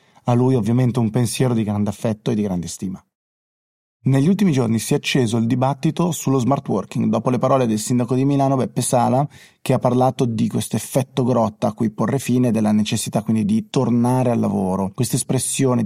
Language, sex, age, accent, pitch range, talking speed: Italian, male, 30-49, native, 110-135 Hz, 195 wpm